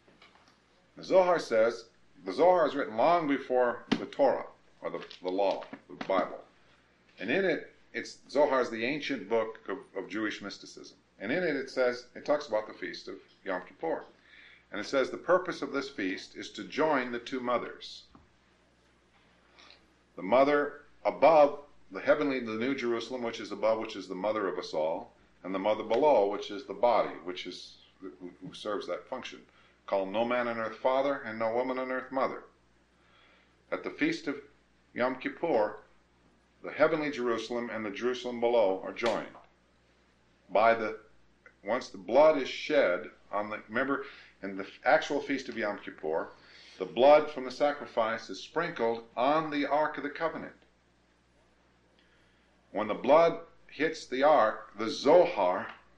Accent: American